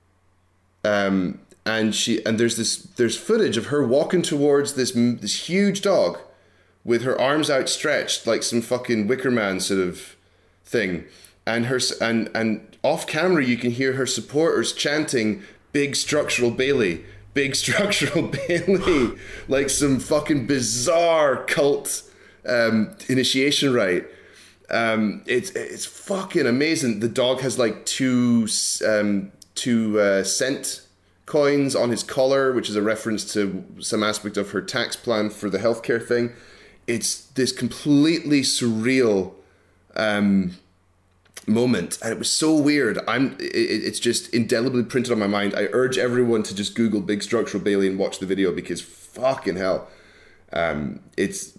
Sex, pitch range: male, 105-140 Hz